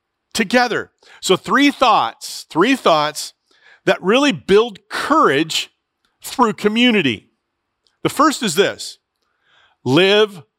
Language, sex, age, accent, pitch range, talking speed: English, male, 50-69, American, 145-195 Hz, 95 wpm